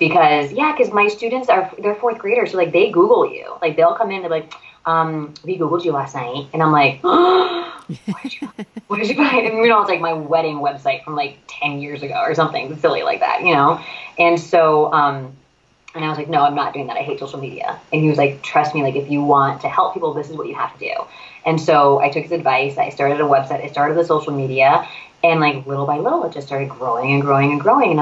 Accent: American